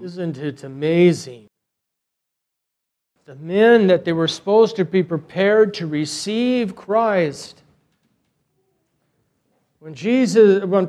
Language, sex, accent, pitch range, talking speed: English, male, American, 155-225 Hz, 100 wpm